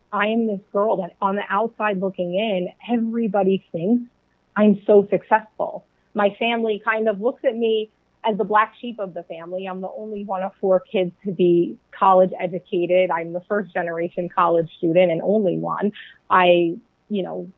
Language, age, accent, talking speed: English, 30-49, American, 180 wpm